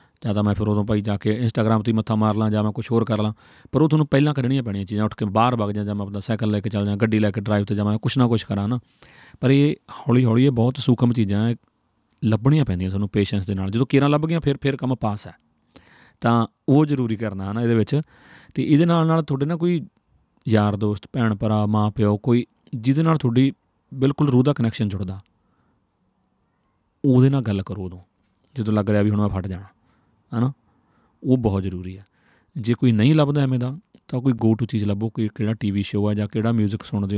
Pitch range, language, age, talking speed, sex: 105-130 Hz, Punjabi, 30-49, 205 wpm, male